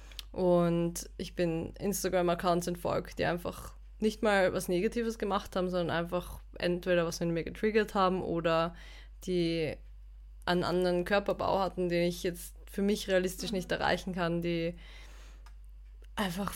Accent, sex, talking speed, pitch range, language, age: German, female, 140 wpm, 170-190 Hz, German, 20-39